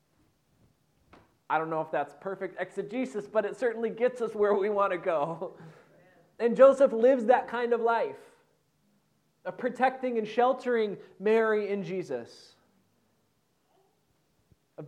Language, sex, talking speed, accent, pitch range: English, male, 130 wpm, American, 135-205 Hz